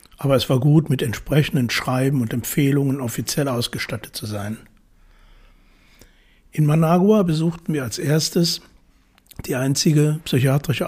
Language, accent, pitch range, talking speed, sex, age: German, German, 135-160 Hz, 120 wpm, male, 60-79